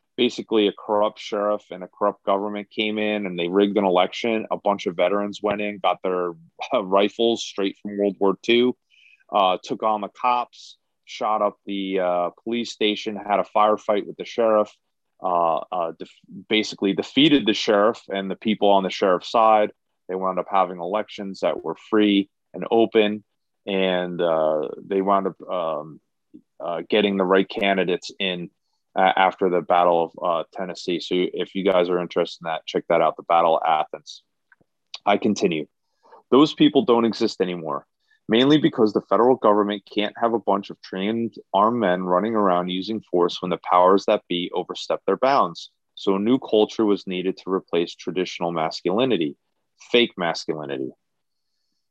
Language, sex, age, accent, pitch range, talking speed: English, male, 30-49, American, 95-110 Hz, 170 wpm